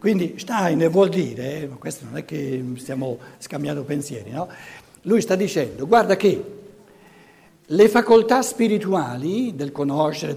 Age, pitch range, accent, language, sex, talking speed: 60-79, 150-210 Hz, native, Italian, male, 140 wpm